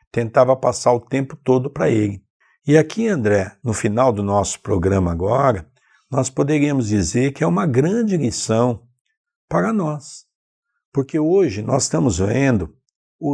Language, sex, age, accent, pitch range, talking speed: Portuguese, male, 60-79, Brazilian, 105-130 Hz, 145 wpm